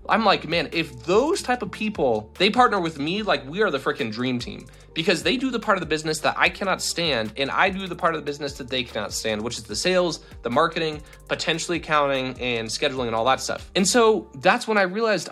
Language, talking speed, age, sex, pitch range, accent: English, 245 wpm, 20-39, male, 135-185 Hz, American